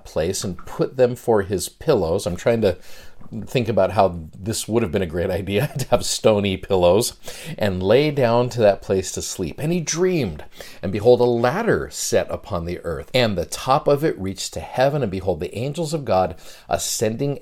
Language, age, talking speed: English, 50-69, 200 wpm